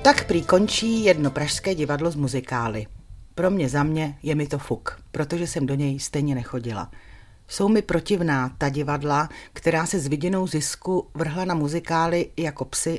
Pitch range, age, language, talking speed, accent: 135-170 Hz, 40-59, Czech, 165 wpm, native